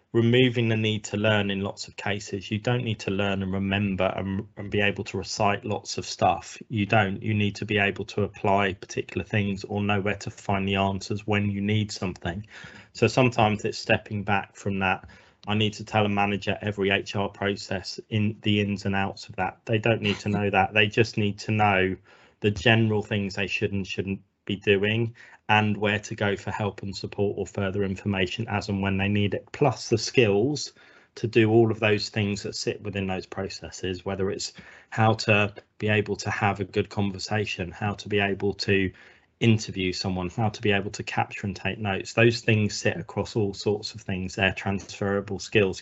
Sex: male